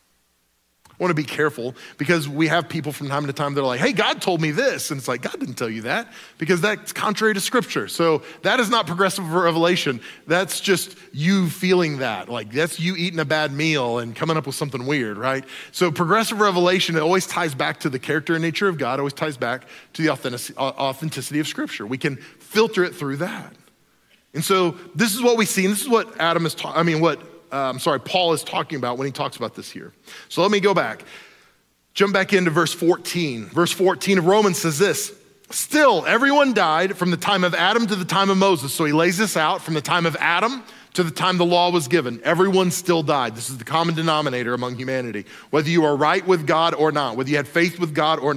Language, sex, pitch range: English, male, 150-190 Hz